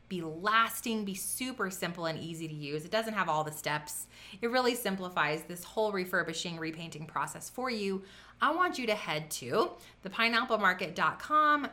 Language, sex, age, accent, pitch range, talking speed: English, female, 30-49, American, 165-225 Hz, 165 wpm